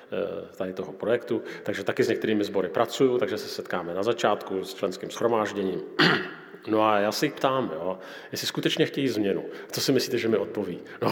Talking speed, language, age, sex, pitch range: 190 wpm, Slovak, 40-59, male, 110-175 Hz